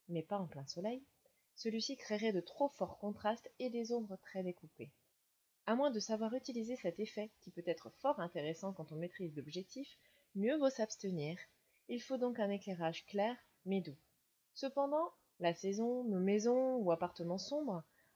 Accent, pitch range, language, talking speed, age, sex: French, 180-245 Hz, French, 170 wpm, 20-39, female